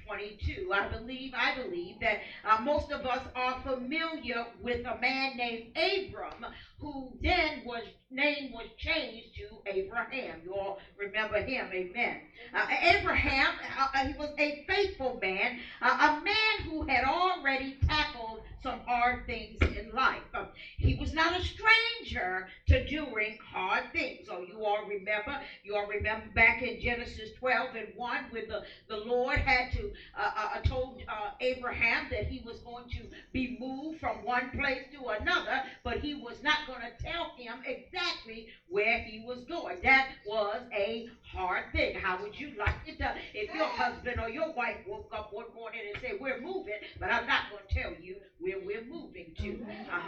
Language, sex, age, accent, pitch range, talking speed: English, female, 50-69, American, 220-300 Hz, 175 wpm